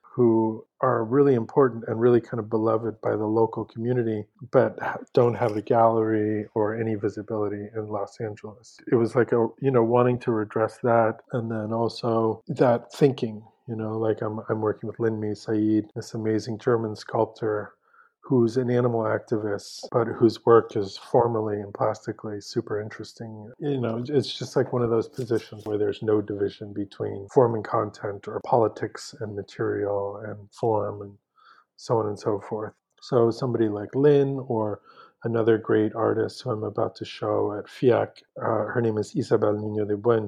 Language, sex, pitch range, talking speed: English, male, 105-120 Hz, 175 wpm